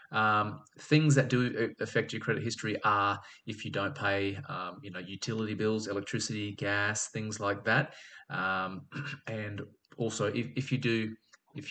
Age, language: 20-39, Spanish